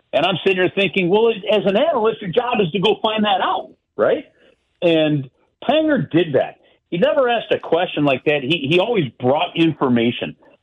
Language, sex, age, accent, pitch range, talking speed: English, male, 50-69, American, 115-165 Hz, 190 wpm